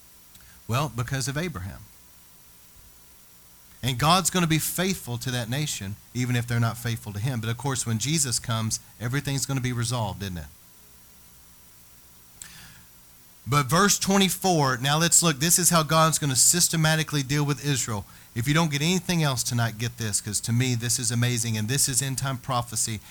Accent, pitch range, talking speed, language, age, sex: American, 115-155 Hz, 180 wpm, English, 40-59, male